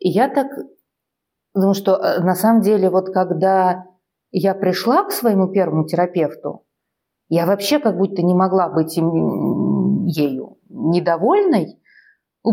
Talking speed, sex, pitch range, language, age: 115 wpm, female, 170-200 Hz, Russian, 30-49